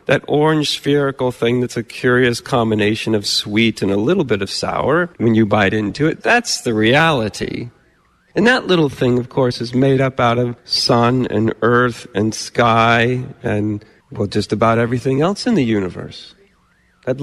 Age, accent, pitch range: 40-59, American, 115-150 Hz